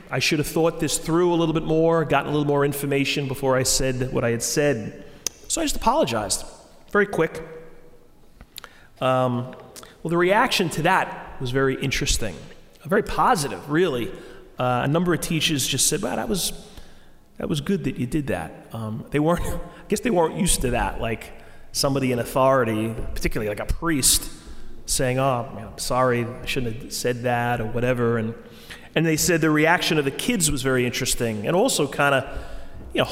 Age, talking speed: 30-49, 190 wpm